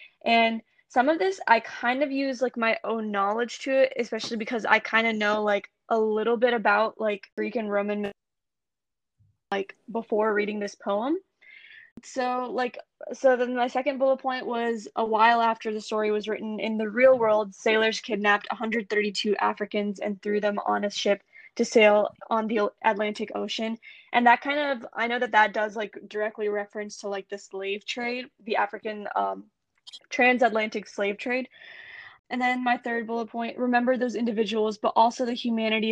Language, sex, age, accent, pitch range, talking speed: English, female, 10-29, American, 210-240 Hz, 175 wpm